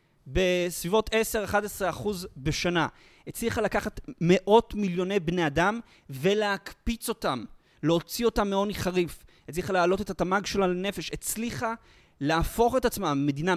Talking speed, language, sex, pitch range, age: 120 wpm, Hebrew, male, 155-220 Hz, 30-49